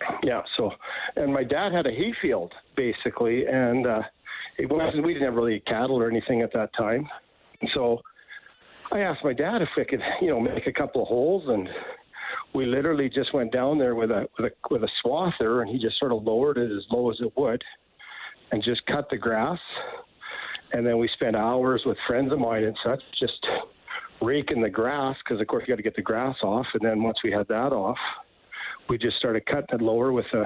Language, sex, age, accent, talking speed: English, male, 50-69, American, 215 wpm